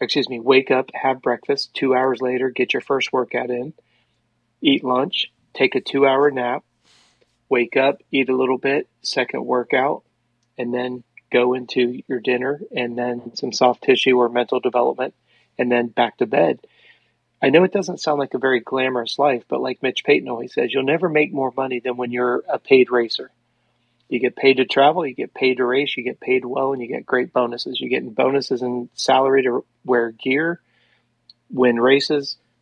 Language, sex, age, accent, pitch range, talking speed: English, male, 30-49, American, 120-135 Hz, 190 wpm